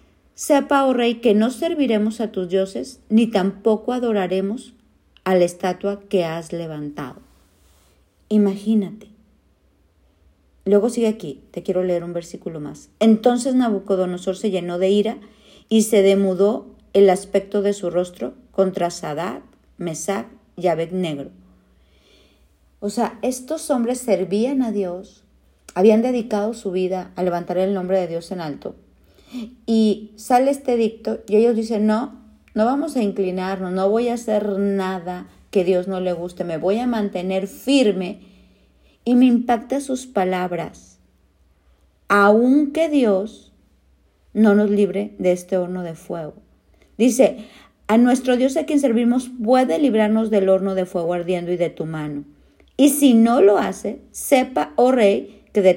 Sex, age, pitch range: female, 50-69, 180-225 Hz